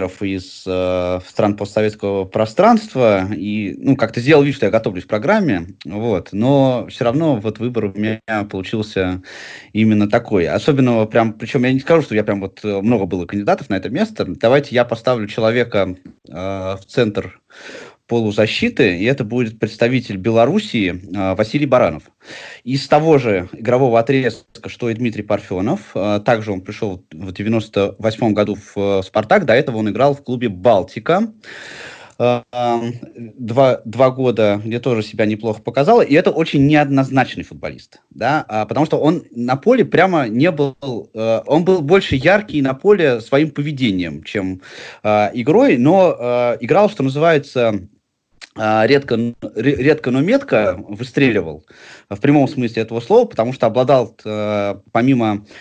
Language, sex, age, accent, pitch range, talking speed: Russian, male, 20-39, native, 105-130 Hz, 140 wpm